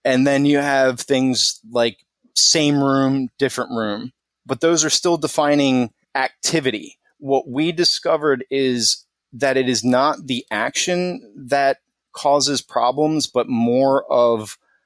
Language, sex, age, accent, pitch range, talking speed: English, male, 30-49, American, 120-145 Hz, 130 wpm